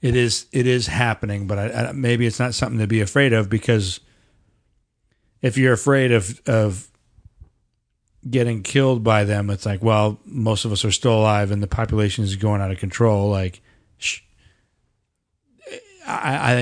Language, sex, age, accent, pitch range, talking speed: English, male, 40-59, American, 105-125 Hz, 165 wpm